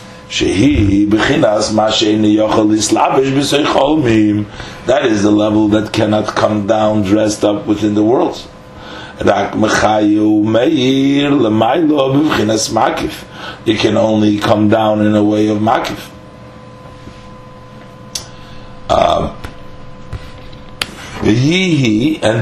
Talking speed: 65 wpm